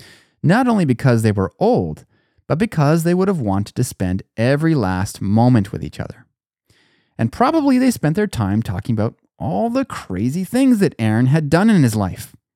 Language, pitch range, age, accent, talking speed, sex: English, 105-165 Hz, 30-49, American, 185 wpm, male